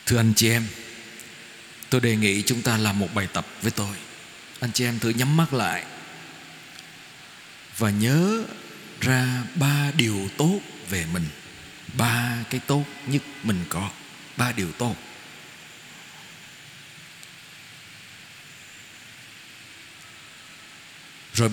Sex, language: male, Vietnamese